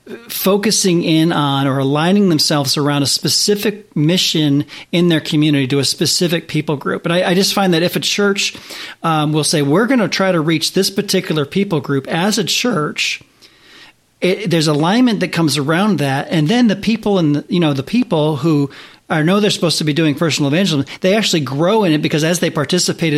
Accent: American